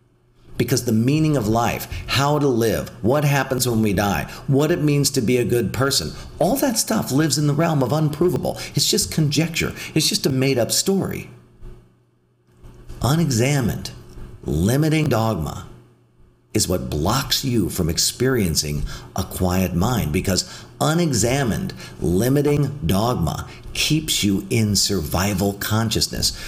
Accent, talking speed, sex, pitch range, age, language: American, 135 wpm, male, 85-140 Hz, 50-69, English